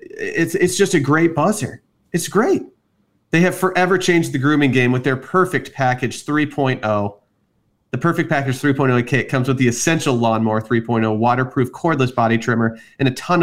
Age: 30-49